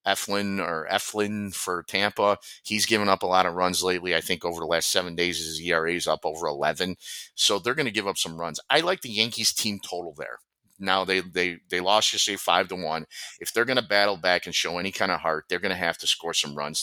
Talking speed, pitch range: 250 wpm, 85-105 Hz